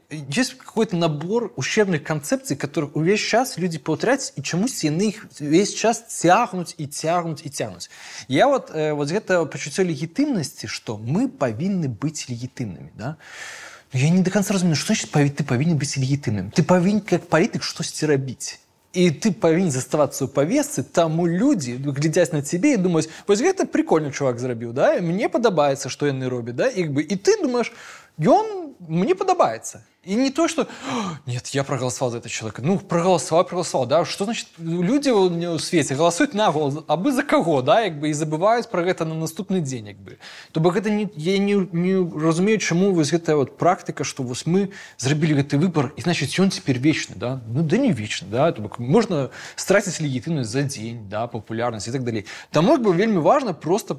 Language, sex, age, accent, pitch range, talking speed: Russian, male, 20-39, native, 140-195 Hz, 185 wpm